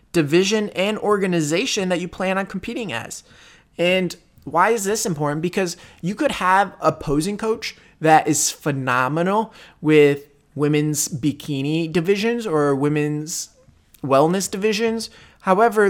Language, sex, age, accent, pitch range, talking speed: English, male, 20-39, American, 150-200 Hz, 125 wpm